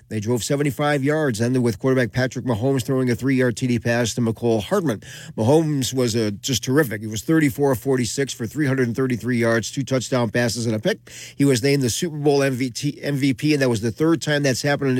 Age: 40-59